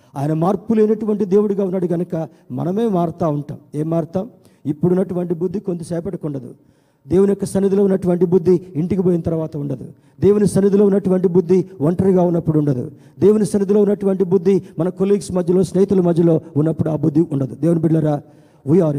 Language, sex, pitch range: Telugu, male, 150-190 Hz